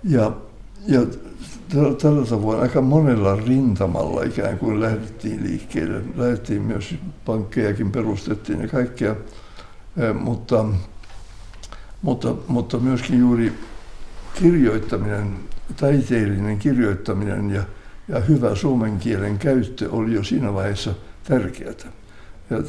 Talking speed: 100 wpm